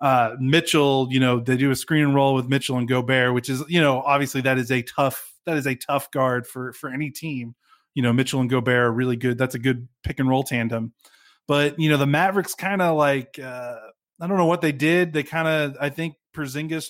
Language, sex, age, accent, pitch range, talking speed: English, male, 30-49, American, 125-150 Hz, 235 wpm